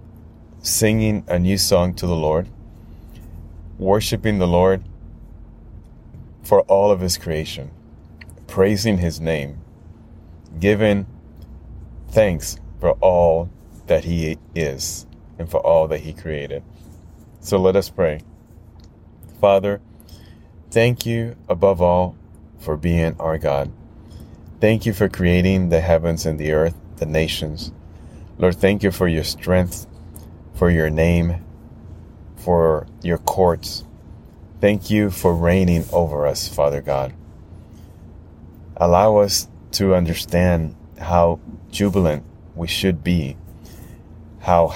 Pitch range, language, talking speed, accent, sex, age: 80-95 Hz, English, 115 wpm, American, male, 30-49